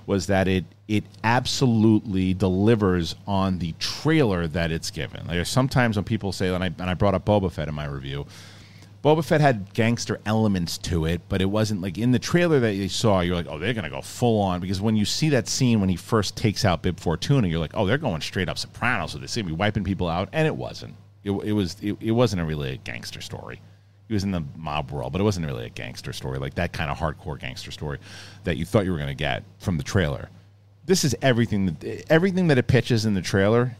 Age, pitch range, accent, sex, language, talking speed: 40-59, 95-115 Hz, American, male, English, 245 wpm